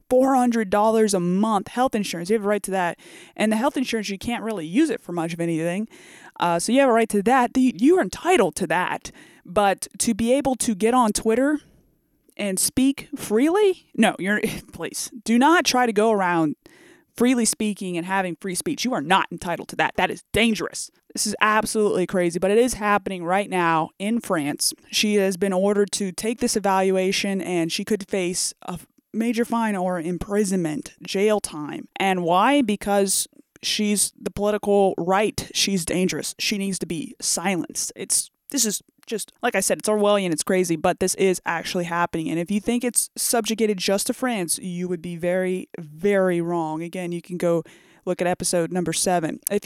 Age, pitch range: 20-39, 180-230 Hz